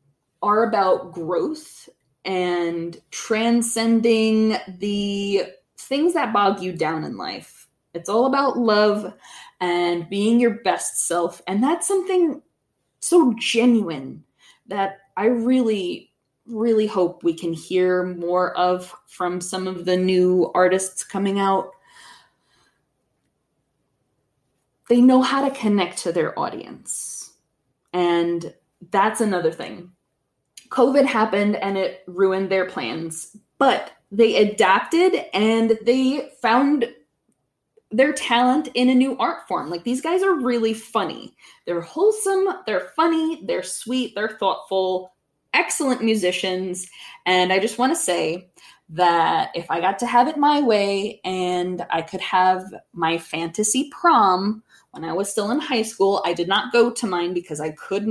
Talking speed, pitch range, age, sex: 135 wpm, 180-240 Hz, 20-39, female